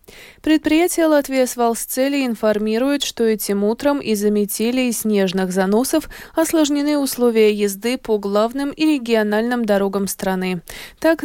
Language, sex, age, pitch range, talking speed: Russian, female, 20-39, 205-270 Hz, 125 wpm